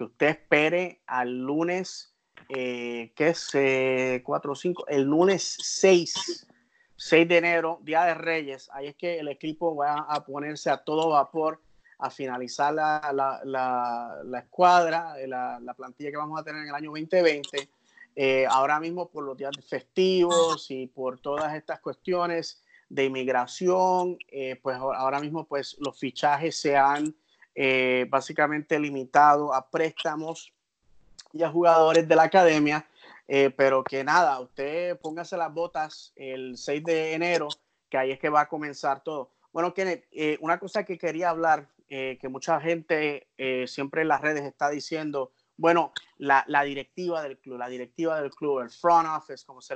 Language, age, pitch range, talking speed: English, 30-49, 135-165 Hz, 165 wpm